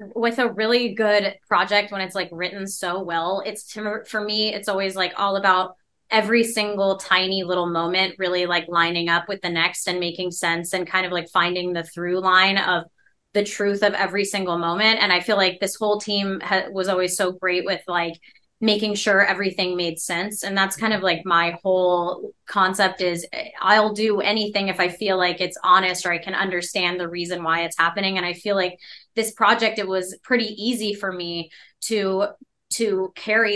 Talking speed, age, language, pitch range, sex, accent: 200 wpm, 20-39, English, 180-210 Hz, female, American